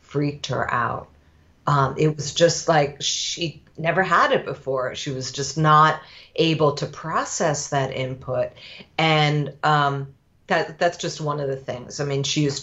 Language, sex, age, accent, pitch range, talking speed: English, female, 40-59, American, 135-175 Hz, 165 wpm